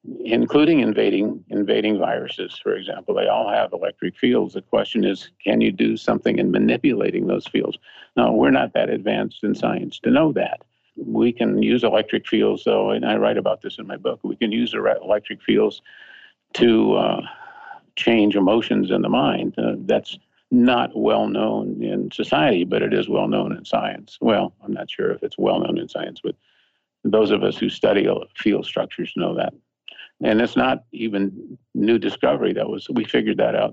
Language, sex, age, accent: English, male, 50-69, American